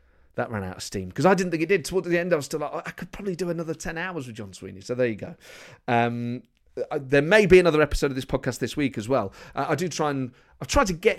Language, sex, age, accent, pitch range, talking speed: English, male, 30-49, British, 110-150 Hz, 300 wpm